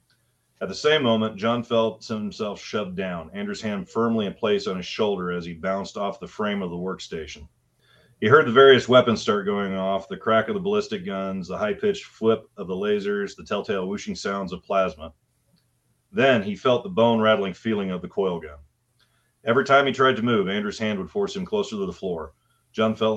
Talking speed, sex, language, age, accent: 205 wpm, male, English, 40-59, American